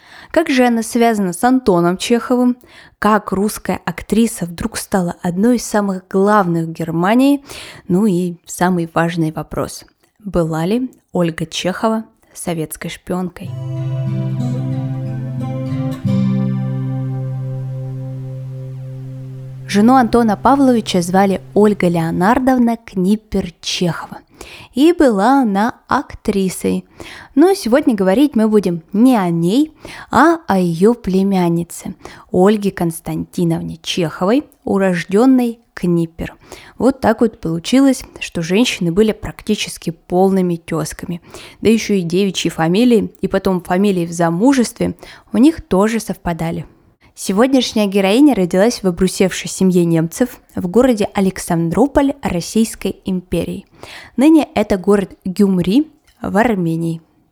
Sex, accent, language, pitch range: female, native, Russian, 170-235 Hz